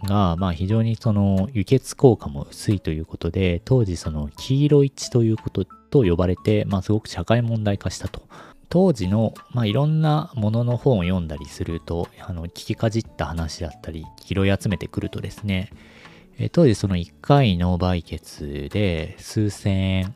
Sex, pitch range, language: male, 85-110 Hz, Japanese